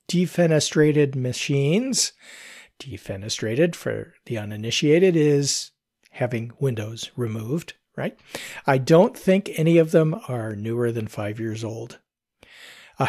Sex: male